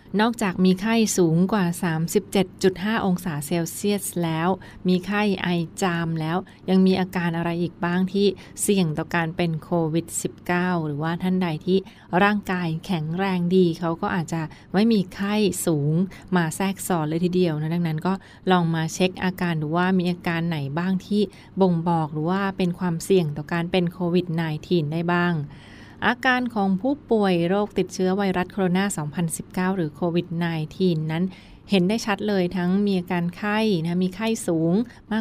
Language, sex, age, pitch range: Thai, female, 20-39, 170-195 Hz